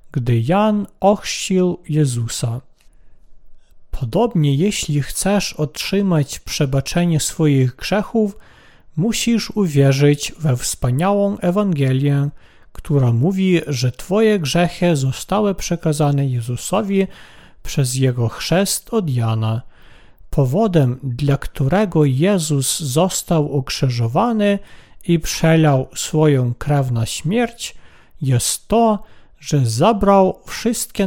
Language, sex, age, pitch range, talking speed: Polish, male, 40-59, 135-195 Hz, 90 wpm